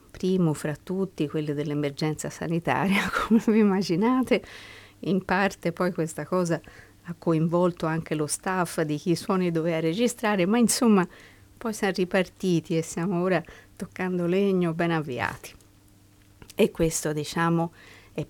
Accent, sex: native, female